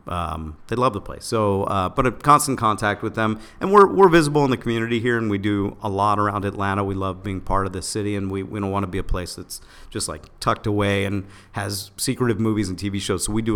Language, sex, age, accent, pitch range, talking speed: English, male, 50-69, American, 95-110 Hz, 260 wpm